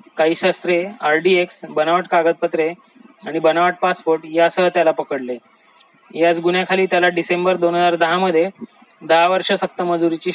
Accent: native